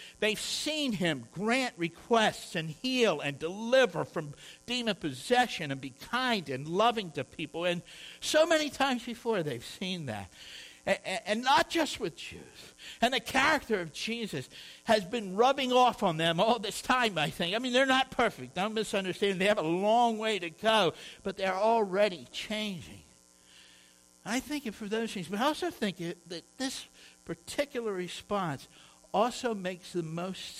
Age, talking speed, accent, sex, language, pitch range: 60-79, 165 wpm, American, male, English, 135-225 Hz